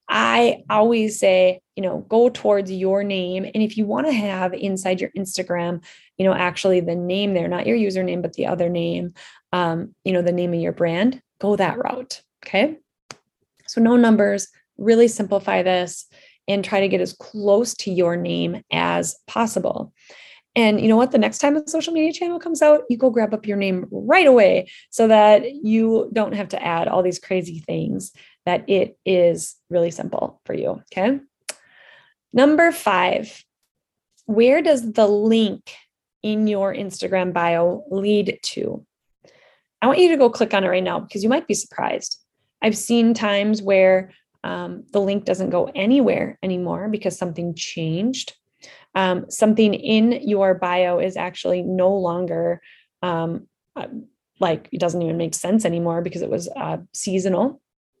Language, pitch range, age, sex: English, 180-230 Hz, 20-39, female